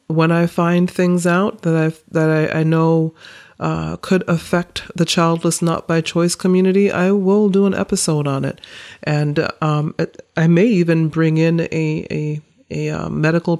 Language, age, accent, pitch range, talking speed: English, 40-59, American, 150-170 Hz, 175 wpm